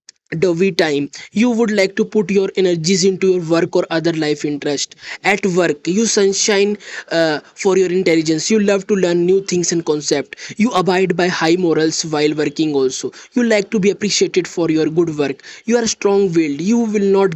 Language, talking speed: English, 195 wpm